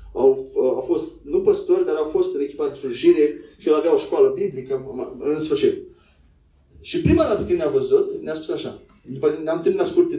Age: 30-49